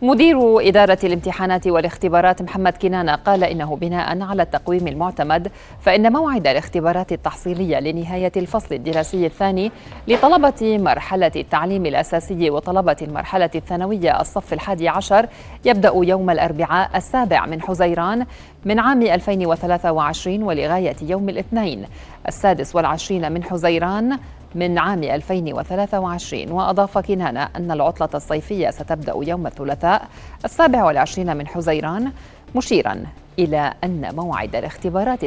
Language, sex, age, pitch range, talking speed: Arabic, female, 40-59, 165-195 Hz, 110 wpm